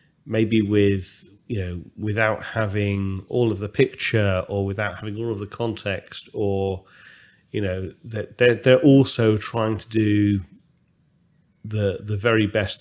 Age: 30-49